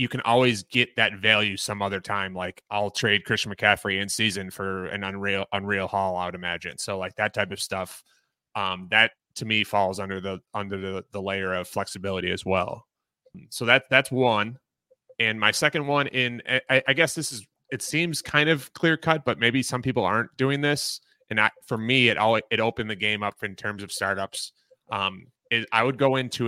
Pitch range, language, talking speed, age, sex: 100-125 Hz, English, 205 wpm, 20-39, male